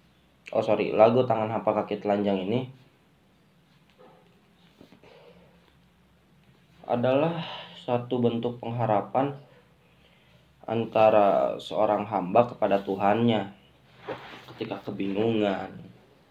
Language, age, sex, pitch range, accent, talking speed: Indonesian, 20-39, male, 100-115 Hz, native, 70 wpm